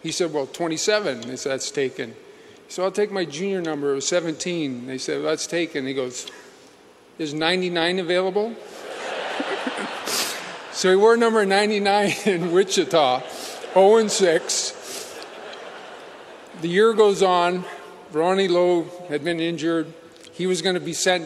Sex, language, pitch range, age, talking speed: male, English, 160-195 Hz, 40-59, 145 wpm